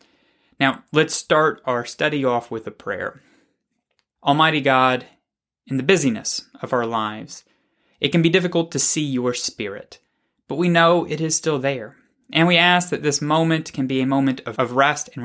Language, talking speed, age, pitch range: English, 175 wpm, 20-39, 125-165 Hz